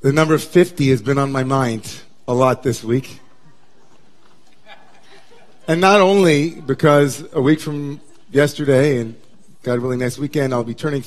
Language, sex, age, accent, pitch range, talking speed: English, male, 40-59, American, 130-170 Hz, 150 wpm